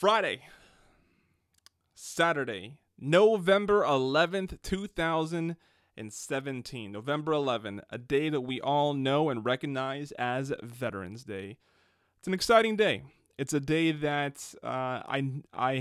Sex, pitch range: male, 115-150 Hz